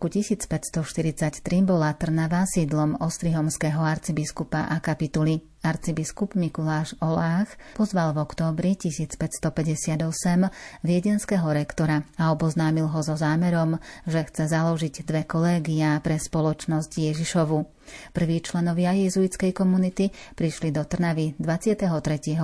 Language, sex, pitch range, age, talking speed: Slovak, female, 155-175 Hz, 30-49, 100 wpm